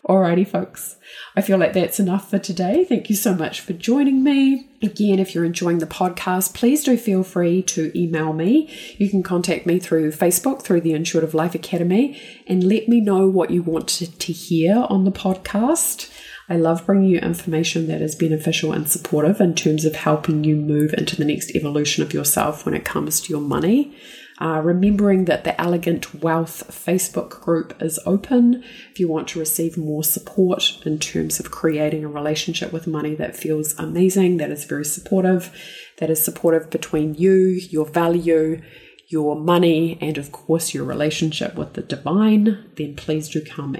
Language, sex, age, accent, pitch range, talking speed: English, female, 30-49, Australian, 160-195 Hz, 180 wpm